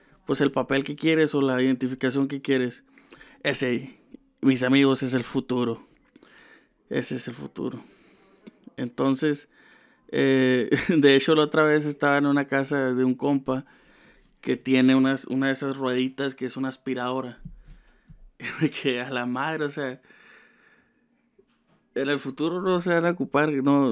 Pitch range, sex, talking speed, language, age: 130-150 Hz, male, 150 wpm, Spanish, 20-39